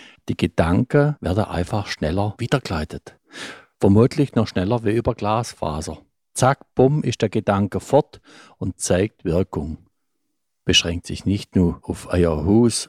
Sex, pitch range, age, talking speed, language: male, 85-110 Hz, 50-69, 130 wpm, German